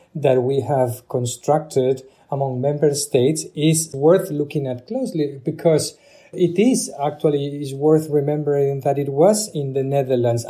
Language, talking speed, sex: English, 150 wpm, male